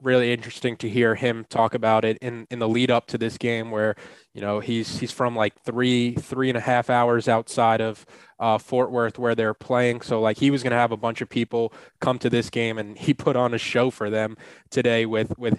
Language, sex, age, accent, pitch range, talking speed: English, male, 20-39, American, 115-125 Hz, 245 wpm